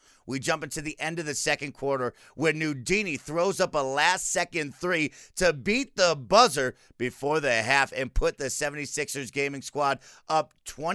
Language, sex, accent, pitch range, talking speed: English, male, American, 140-185 Hz, 170 wpm